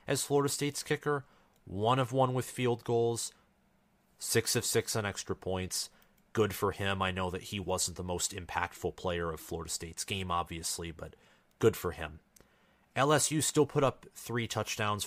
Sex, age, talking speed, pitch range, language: male, 30-49, 170 wpm, 90-110 Hz, English